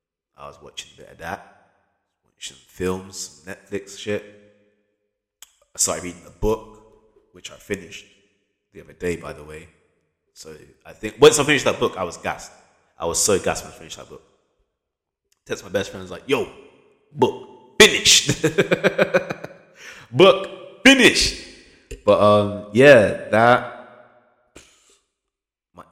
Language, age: English, 20-39